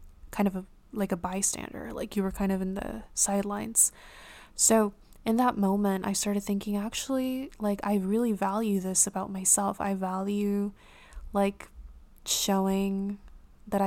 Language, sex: English, female